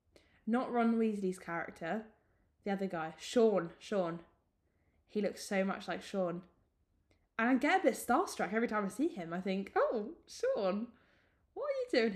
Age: 10-29